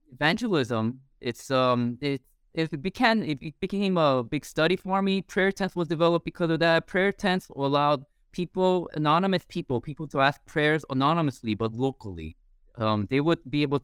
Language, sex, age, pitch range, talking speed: English, male, 20-39, 115-160 Hz, 165 wpm